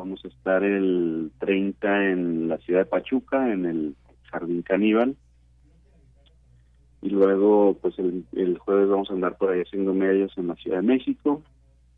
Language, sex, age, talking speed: Spanish, male, 30-49, 160 wpm